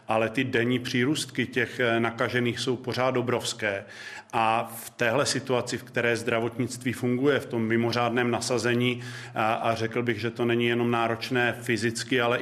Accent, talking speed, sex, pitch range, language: native, 155 wpm, male, 115-125 Hz, Czech